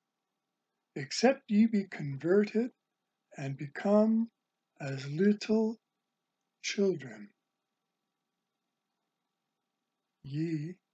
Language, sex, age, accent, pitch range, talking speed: English, male, 60-79, American, 165-205 Hz, 55 wpm